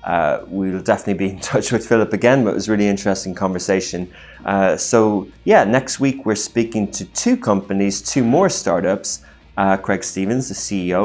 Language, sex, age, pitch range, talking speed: English, male, 20-39, 95-110 Hz, 190 wpm